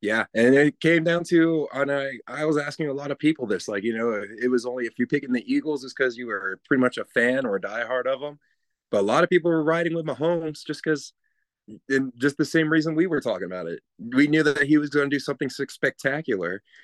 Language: English